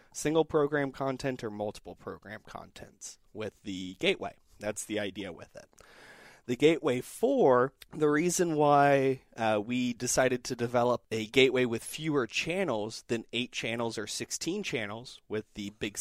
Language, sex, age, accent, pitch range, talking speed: English, male, 30-49, American, 110-135 Hz, 150 wpm